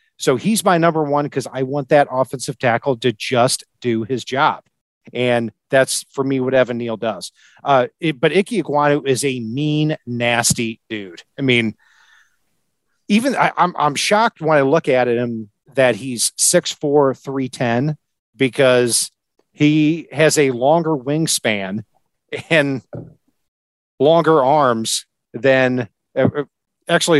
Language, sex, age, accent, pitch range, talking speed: English, male, 40-59, American, 120-155 Hz, 140 wpm